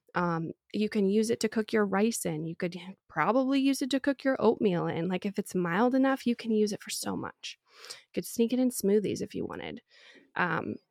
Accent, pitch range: American, 190-235 Hz